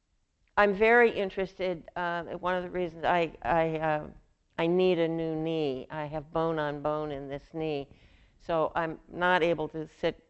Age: 60-79